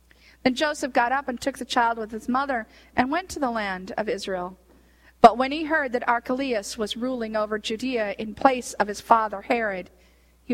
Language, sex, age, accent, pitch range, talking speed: English, female, 40-59, American, 200-265 Hz, 200 wpm